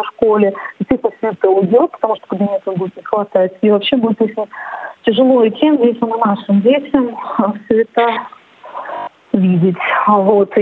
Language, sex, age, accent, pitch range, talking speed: Russian, female, 30-49, native, 205-255 Hz, 145 wpm